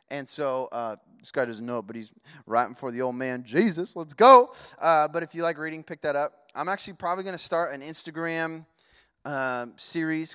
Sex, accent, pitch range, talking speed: male, American, 115-165 Hz, 210 wpm